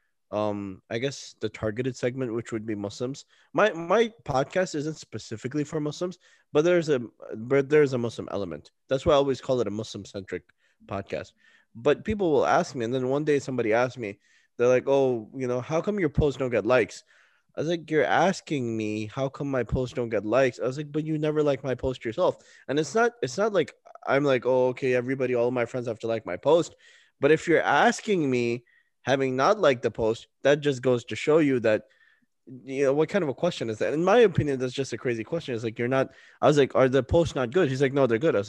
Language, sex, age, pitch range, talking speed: English, male, 20-39, 115-150 Hz, 240 wpm